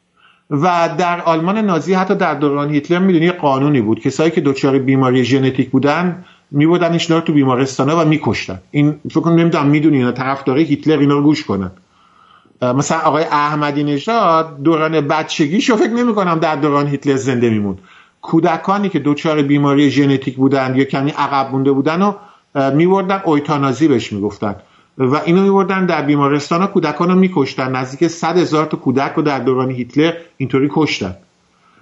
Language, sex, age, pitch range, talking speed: English, male, 50-69, 135-175 Hz, 160 wpm